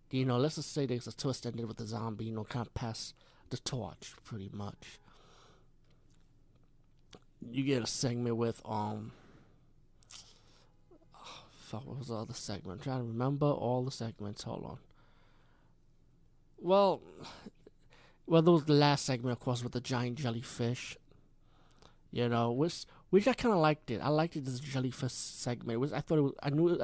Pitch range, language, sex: 120-150 Hz, English, male